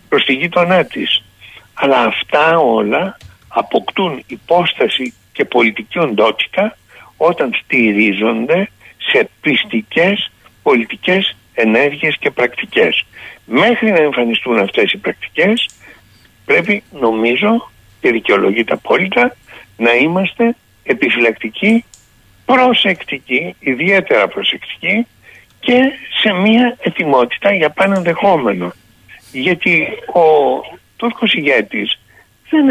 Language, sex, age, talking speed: Greek, male, 60-79, 90 wpm